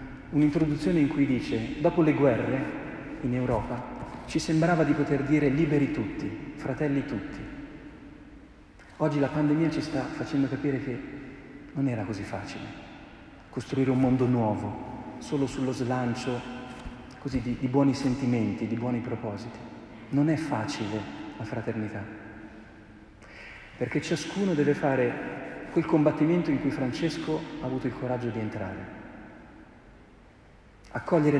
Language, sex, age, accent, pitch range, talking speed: Italian, male, 40-59, native, 110-145 Hz, 125 wpm